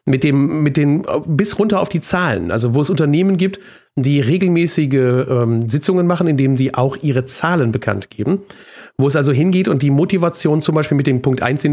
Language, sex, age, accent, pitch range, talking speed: German, male, 40-59, German, 135-180 Hz, 205 wpm